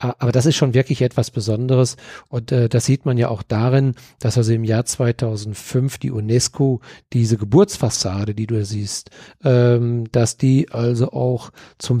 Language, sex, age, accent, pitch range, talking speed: German, male, 40-59, German, 115-140 Hz, 170 wpm